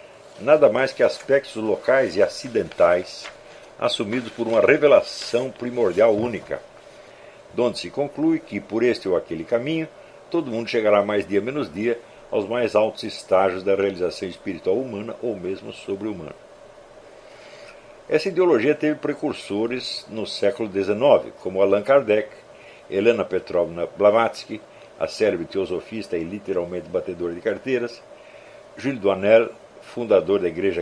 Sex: male